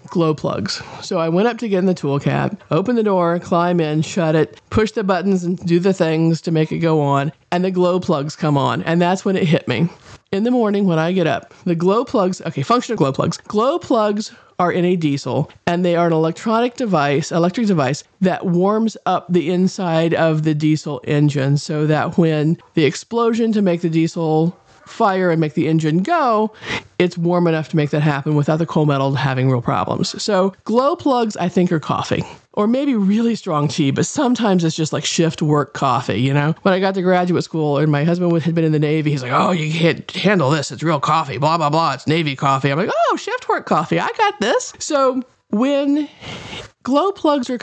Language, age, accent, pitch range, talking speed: English, 40-59, American, 155-200 Hz, 220 wpm